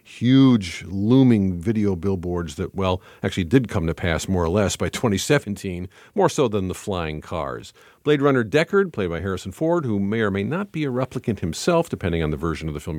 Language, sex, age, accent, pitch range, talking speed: English, male, 50-69, American, 95-125 Hz, 210 wpm